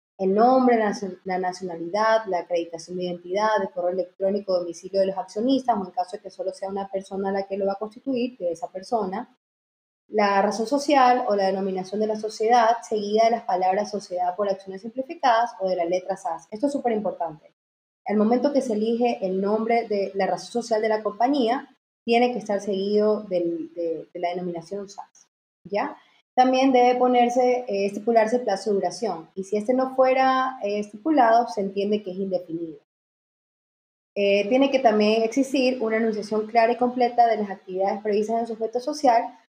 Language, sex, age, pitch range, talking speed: Spanish, female, 20-39, 190-240 Hz, 190 wpm